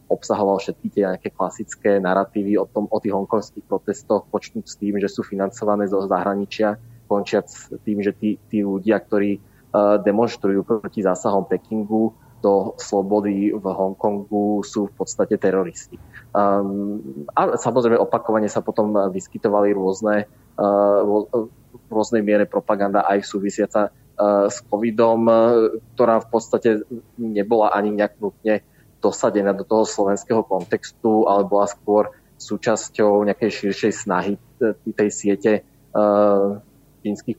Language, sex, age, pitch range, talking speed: Slovak, male, 20-39, 100-110 Hz, 130 wpm